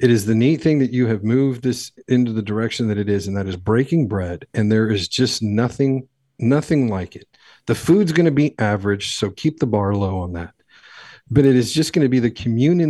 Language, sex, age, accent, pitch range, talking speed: English, male, 50-69, American, 105-130 Hz, 230 wpm